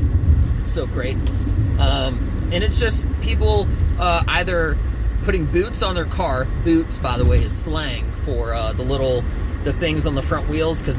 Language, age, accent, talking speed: English, 30-49, American, 170 wpm